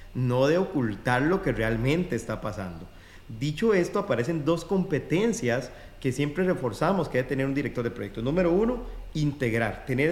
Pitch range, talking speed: 120-165 Hz, 160 wpm